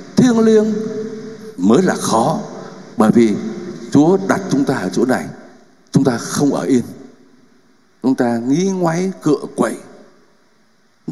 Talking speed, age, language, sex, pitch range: 140 wpm, 60-79, Vietnamese, male, 155-215 Hz